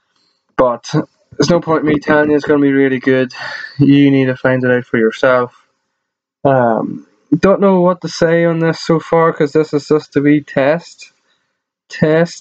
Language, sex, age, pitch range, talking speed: English, male, 10-29, 115-150 Hz, 195 wpm